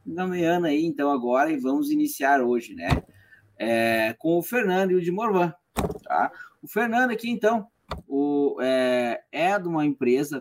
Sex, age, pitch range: male, 20-39, 170-245 Hz